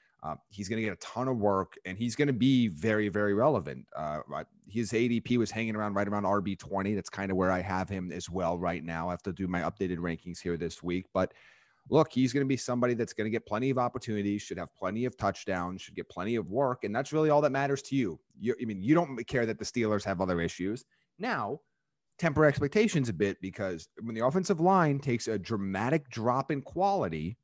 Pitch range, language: 100-135 Hz, English